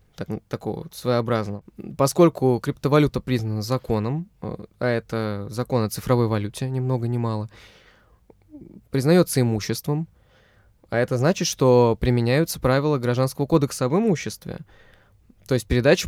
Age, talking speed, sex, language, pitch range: 20-39, 115 wpm, male, Russian, 120-145 Hz